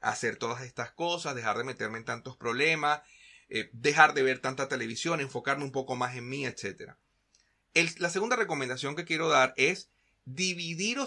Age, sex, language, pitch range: 30-49, male, Spanish, 125-175 Hz